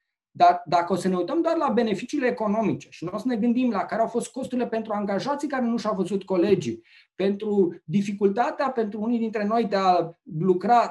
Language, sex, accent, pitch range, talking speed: Romanian, male, native, 185-235 Hz, 200 wpm